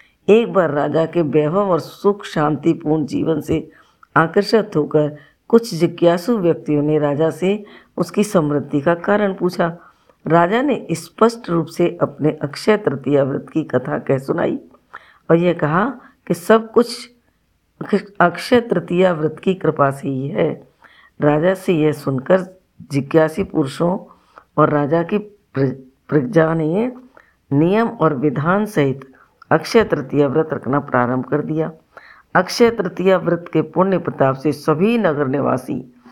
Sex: female